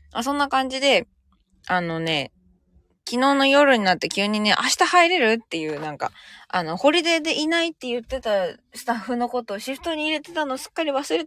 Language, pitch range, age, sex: Japanese, 170-230 Hz, 20-39, female